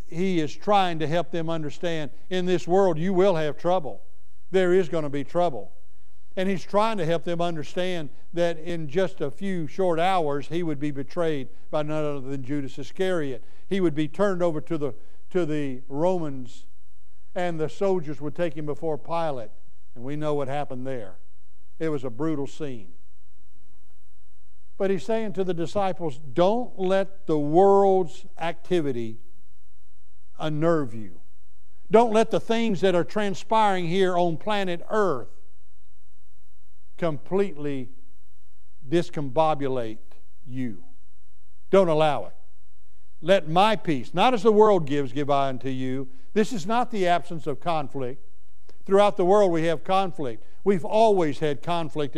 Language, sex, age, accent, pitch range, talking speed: English, male, 60-79, American, 115-180 Hz, 150 wpm